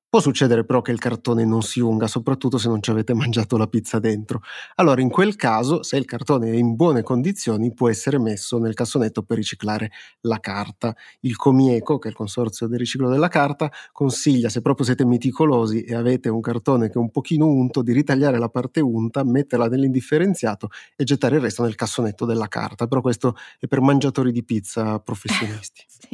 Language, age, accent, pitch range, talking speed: Italian, 30-49, native, 115-135 Hz, 195 wpm